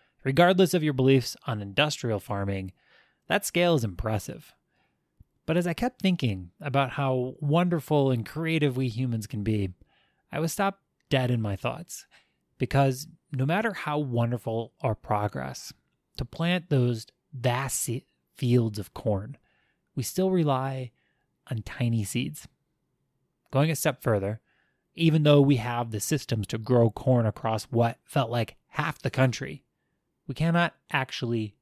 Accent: American